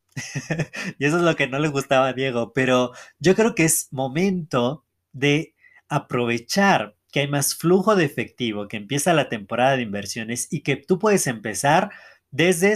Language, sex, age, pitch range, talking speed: Spanish, male, 30-49, 125-170 Hz, 170 wpm